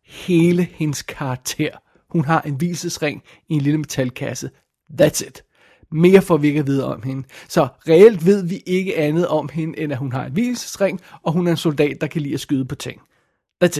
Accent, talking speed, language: native, 210 wpm, Danish